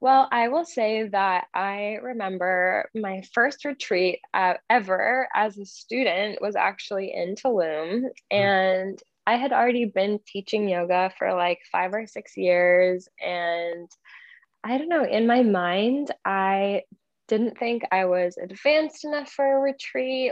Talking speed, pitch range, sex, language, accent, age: 145 wpm, 185-265 Hz, female, English, American, 10-29